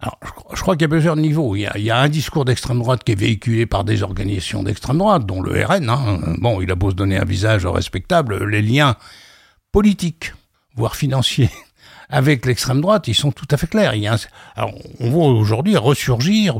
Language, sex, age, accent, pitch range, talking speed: French, male, 60-79, French, 100-140 Hz, 225 wpm